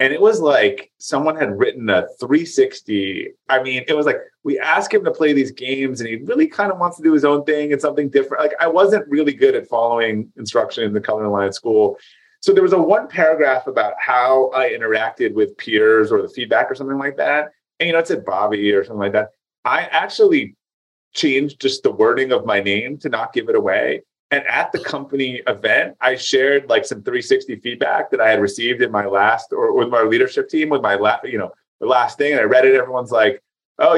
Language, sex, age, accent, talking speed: English, male, 30-49, American, 230 wpm